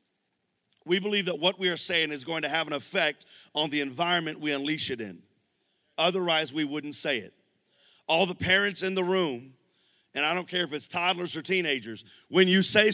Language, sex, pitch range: English, male, 175-215 Hz